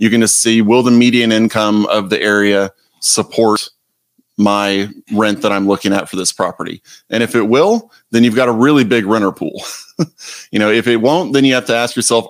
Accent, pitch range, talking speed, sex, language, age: American, 100-115 Hz, 215 wpm, male, English, 30-49